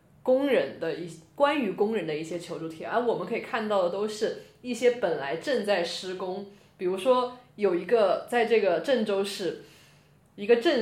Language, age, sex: Chinese, 20-39, female